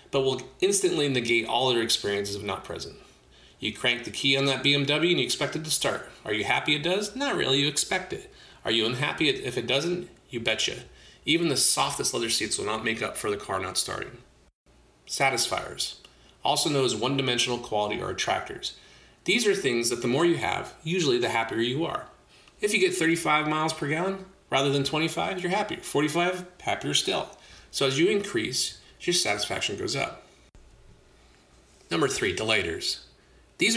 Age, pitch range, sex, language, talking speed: 30-49, 110-160 Hz, male, English, 185 wpm